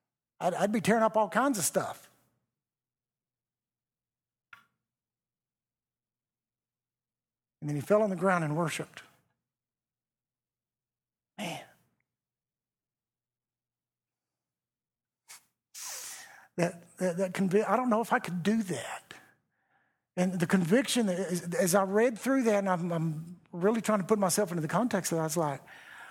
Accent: American